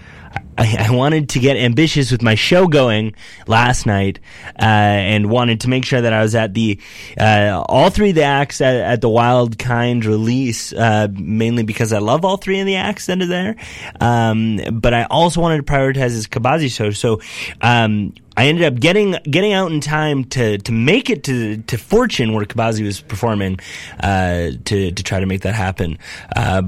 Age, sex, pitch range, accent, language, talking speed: 20-39, male, 105-145 Hz, American, English, 195 wpm